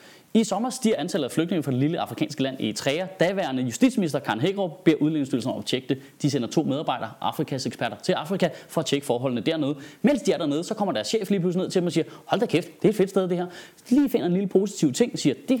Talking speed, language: 275 wpm, Danish